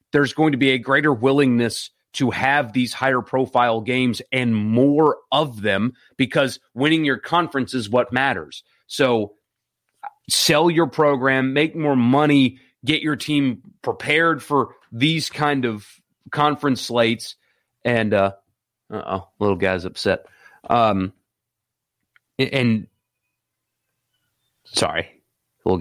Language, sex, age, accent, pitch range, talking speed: English, male, 30-49, American, 115-150 Hz, 125 wpm